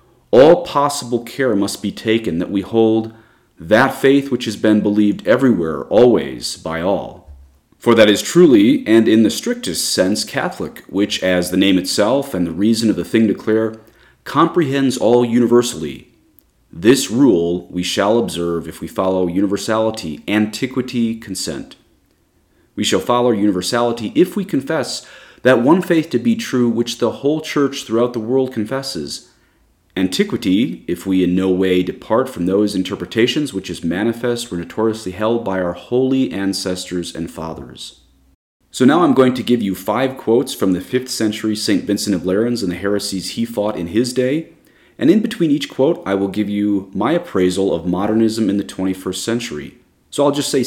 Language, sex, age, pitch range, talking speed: English, male, 30-49, 95-120 Hz, 170 wpm